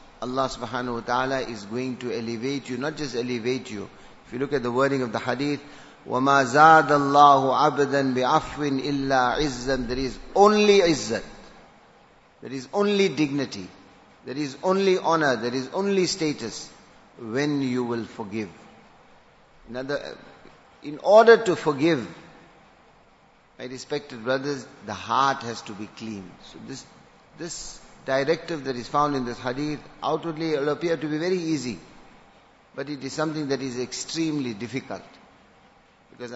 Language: English